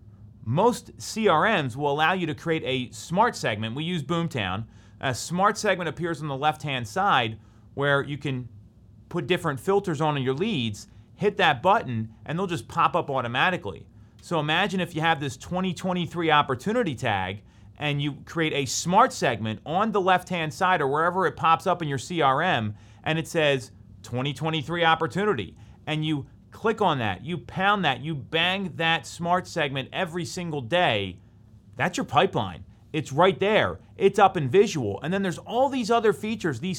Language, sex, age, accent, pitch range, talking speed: English, male, 30-49, American, 115-180 Hz, 175 wpm